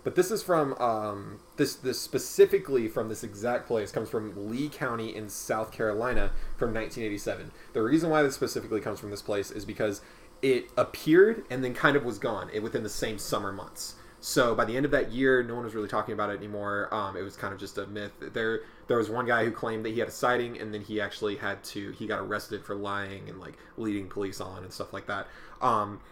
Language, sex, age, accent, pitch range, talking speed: English, male, 20-39, American, 105-135 Hz, 230 wpm